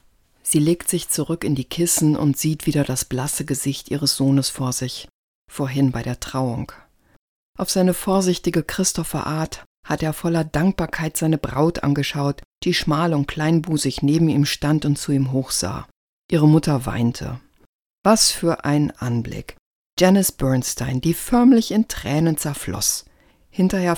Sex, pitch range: female, 140-180 Hz